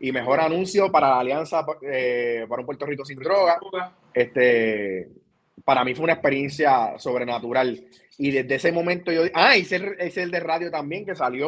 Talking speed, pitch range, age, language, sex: 180 wpm, 140-195 Hz, 20-39, Spanish, male